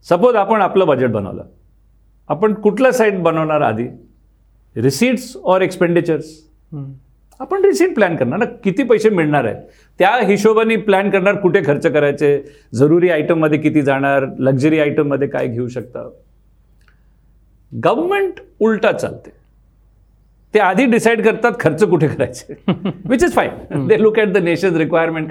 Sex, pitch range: male, 140-210 Hz